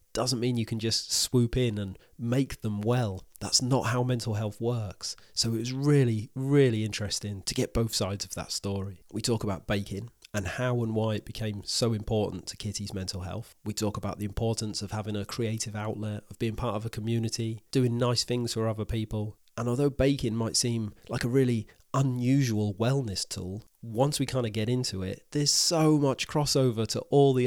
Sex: male